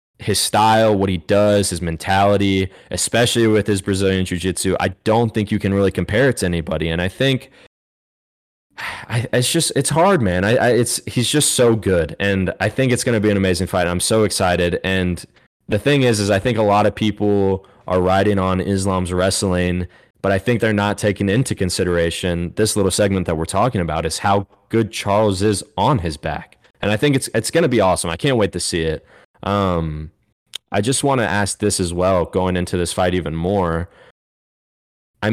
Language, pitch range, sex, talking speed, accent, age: English, 90-110 Hz, male, 205 wpm, American, 20-39